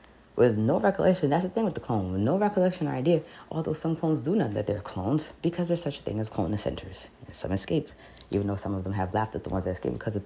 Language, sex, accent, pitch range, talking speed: English, female, American, 100-125 Hz, 275 wpm